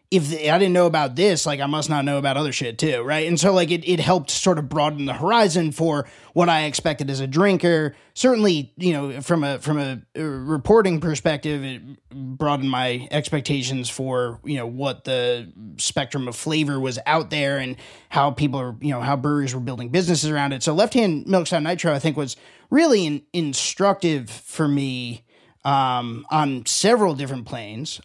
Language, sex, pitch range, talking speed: English, male, 140-180 Hz, 195 wpm